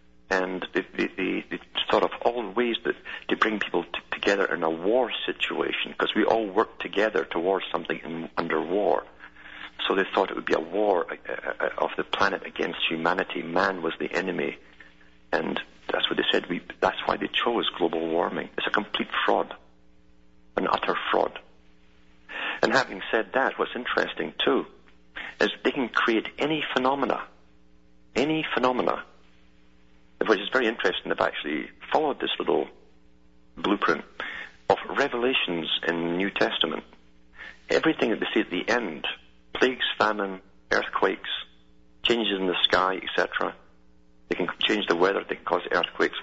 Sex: male